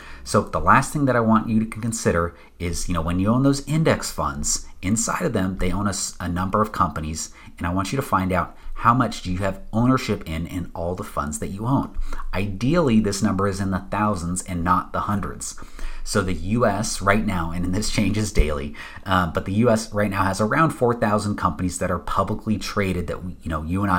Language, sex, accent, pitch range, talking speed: English, male, American, 85-110 Hz, 225 wpm